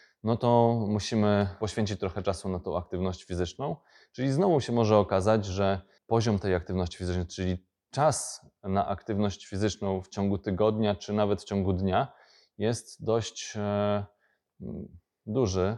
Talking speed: 135 wpm